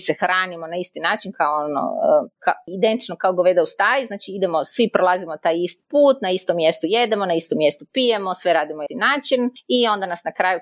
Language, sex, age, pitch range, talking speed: Croatian, female, 30-49, 170-205 Hz, 215 wpm